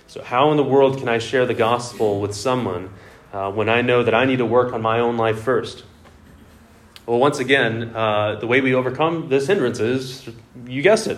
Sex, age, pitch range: male, 30-49, 110-140 Hz